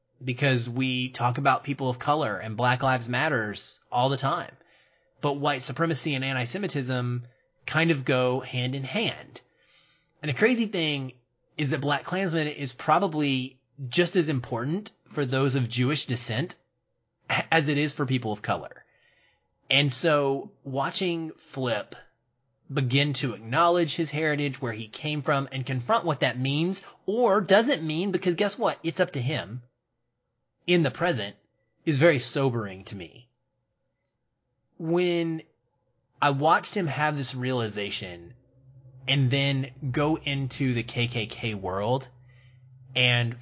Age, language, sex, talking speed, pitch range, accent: 30-49, English, male, 140 wpm, 125-150 Hz, American